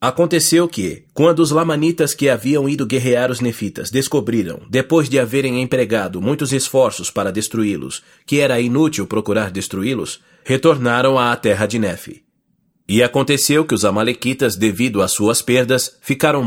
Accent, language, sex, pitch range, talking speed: Brazilian, English, male, 110-140 Hz, 145 wpm